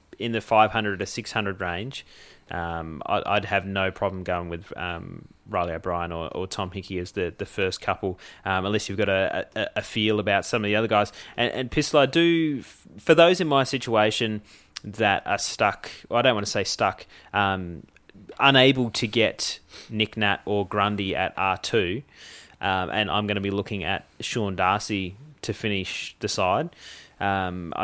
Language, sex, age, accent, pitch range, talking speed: English, male, 20-39, Australian, 95-115 Hz, 185 wpm